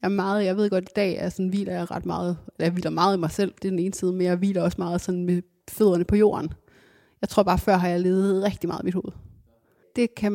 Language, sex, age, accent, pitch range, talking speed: English, female, 30-49, Danish, 185-205 Hz, 280 wpm